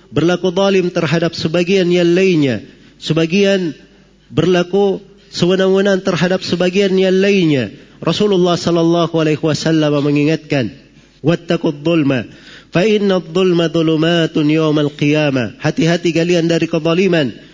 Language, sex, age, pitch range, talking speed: Indonesian, male, 40-59, 150-185 Hz, 80 wpm